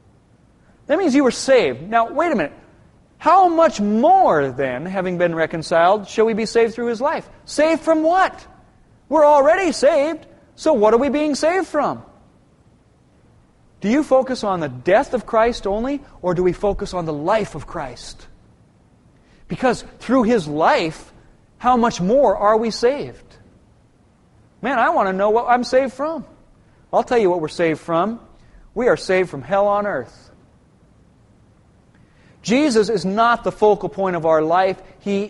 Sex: male